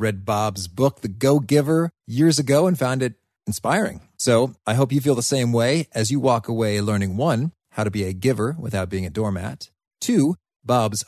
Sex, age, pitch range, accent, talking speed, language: male, 40-59, 95-125 Hz, American, 195 wpm, English